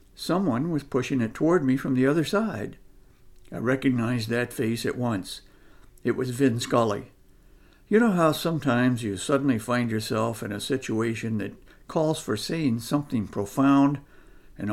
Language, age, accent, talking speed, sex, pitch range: English, 60-79, American, 155 wpm, male, 115-140 Hz